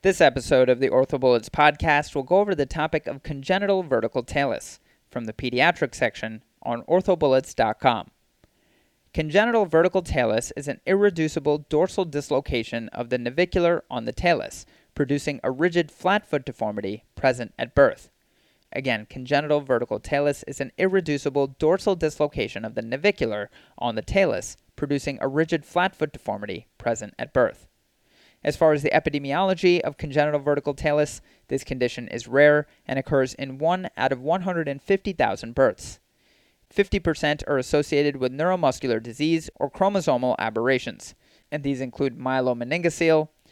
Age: 30-49